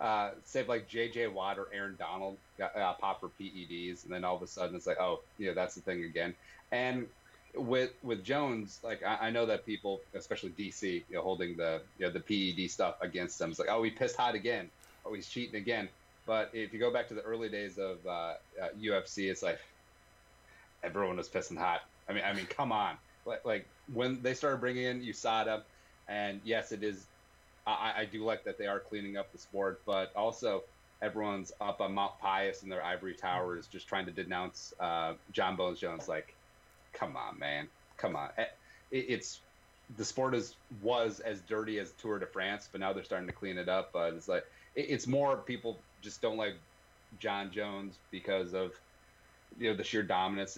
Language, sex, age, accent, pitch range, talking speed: English, male, 30-49, American, 95-115 Hz, 205 wpm